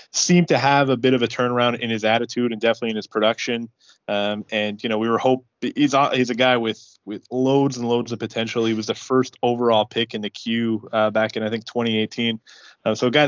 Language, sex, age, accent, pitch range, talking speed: English, male, 20-39, American, 110-125 Hz, 240 wpm